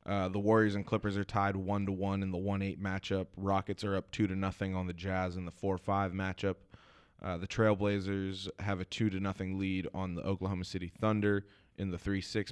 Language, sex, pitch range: English, male, 95-100 Hz